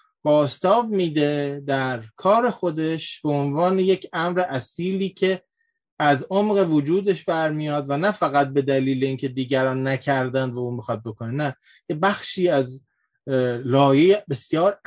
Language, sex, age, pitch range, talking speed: Persian, male, 30-49, 135-180 Hz, 135 wpm